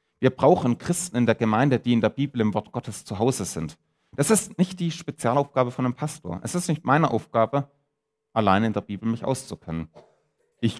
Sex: male